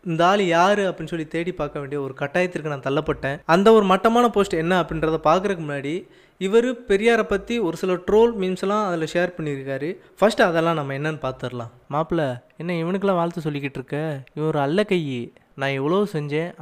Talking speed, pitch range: 175 wpm, 145-190 Hz